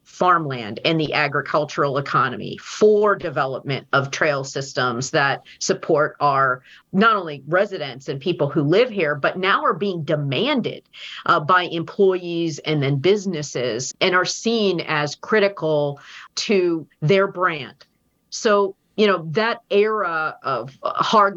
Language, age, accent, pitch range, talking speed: English, 40-59, American, 145-185 Hz, 130 wpm